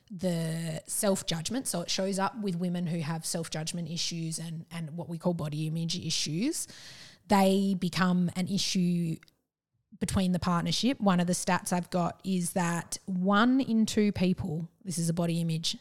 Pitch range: 170-195 Hz